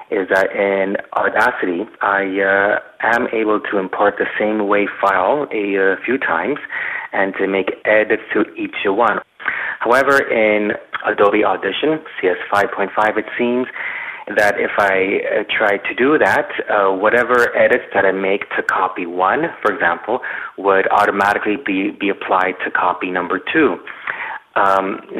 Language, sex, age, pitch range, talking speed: English, male, 30-49, 95-120 Hz, 150 wpm